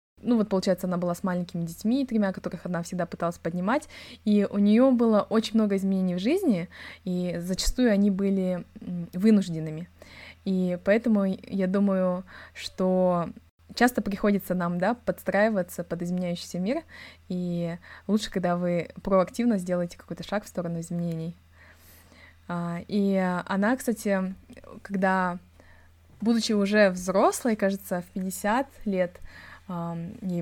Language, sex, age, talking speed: Russian, female, 20-39, 125 wpm